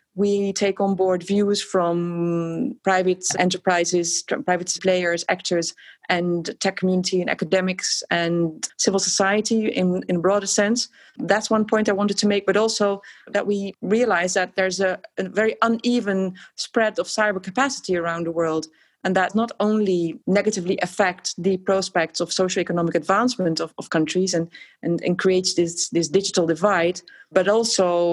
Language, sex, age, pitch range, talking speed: English, female, 30-49, 175-200 Hz, 155 wpm